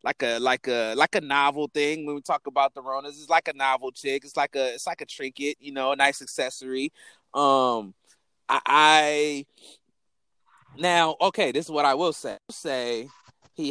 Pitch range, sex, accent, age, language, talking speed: 120-145 Hz, male, American, 20-39, English, 195 wpm